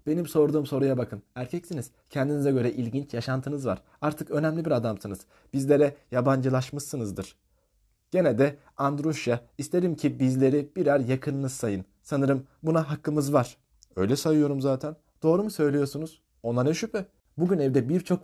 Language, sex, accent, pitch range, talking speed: Turkish, male, native, 110-150 Hz, 135 wpm